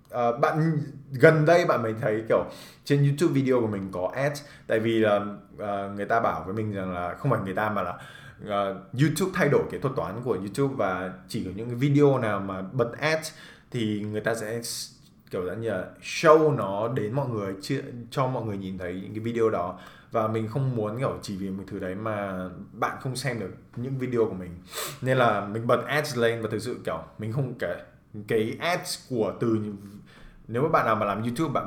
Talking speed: 220 wpm